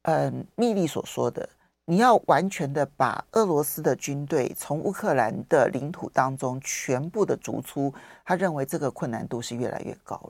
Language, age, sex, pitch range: Chinese, 50-69, male, 130-180 Hz